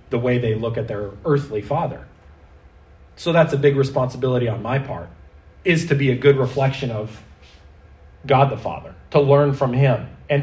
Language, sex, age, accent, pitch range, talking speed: English, male, 30-49, American, 115-180 Hz, 180 wpm